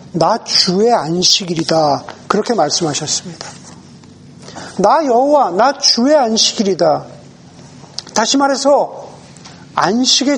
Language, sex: Korean, male